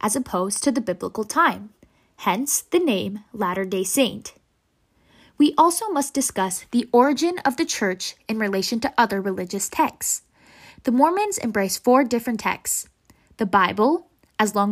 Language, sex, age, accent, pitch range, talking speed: English, female, 10-29, American, 205-280 Hz, 145 wpm